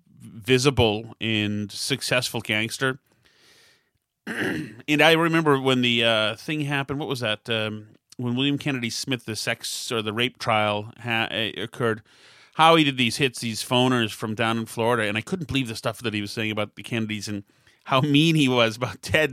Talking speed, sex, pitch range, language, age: 185 wpm, male, 115-145 Hz, English, 30-49